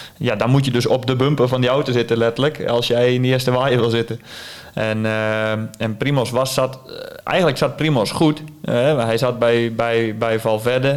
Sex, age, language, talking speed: male, 20-39, Dutch, 210 wpm